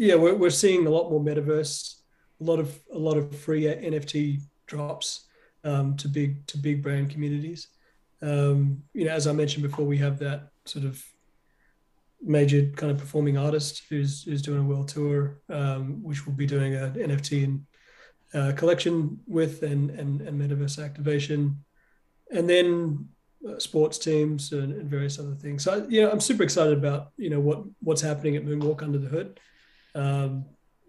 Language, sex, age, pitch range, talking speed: English, male, 30-49, 145-165 Hz, 175 wpm